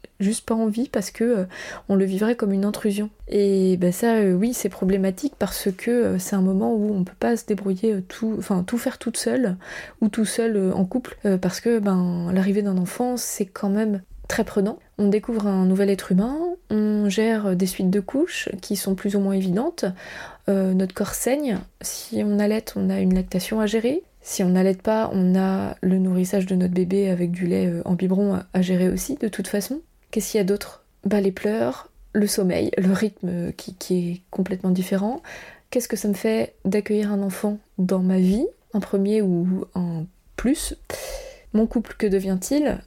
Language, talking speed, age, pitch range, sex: French, 205 wpm, 20-39, 190-220 Hz, female